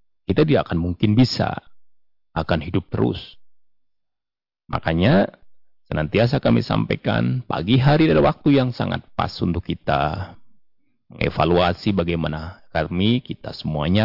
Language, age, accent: Indonesian, 30-49, native